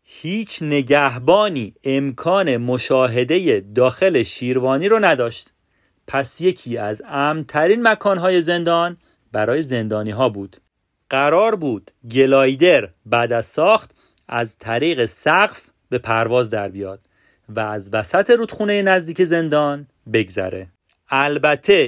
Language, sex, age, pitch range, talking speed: Persian, male, 40-59, 115-175 Hz, 105 wpm